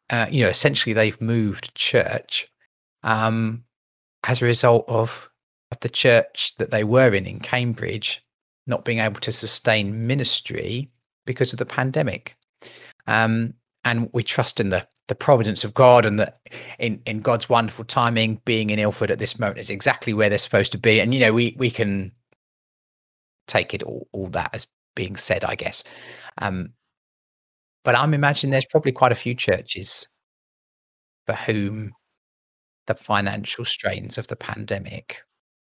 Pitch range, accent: 105-120 Hz, British